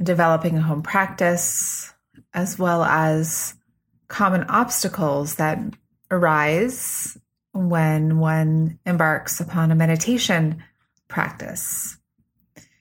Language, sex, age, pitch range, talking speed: English, female, 30-49, 165-200 Hz, 85 wpm